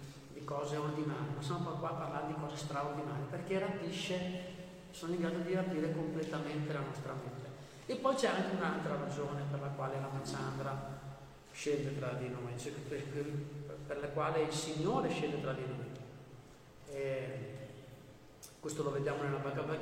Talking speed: 165 wpm